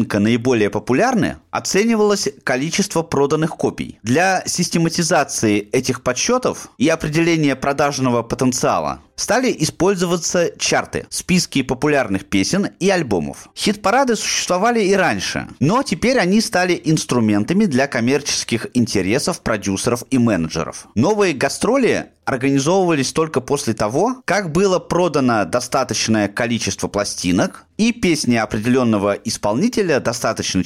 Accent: native